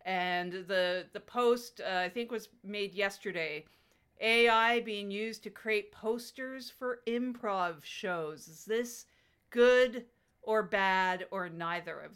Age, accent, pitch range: 50-69, American, 160-210 Hz